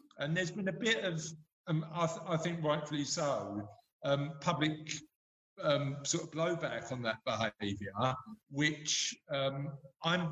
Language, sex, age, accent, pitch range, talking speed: English, male, 50-69, British, 130-160 Hz, 145 wpm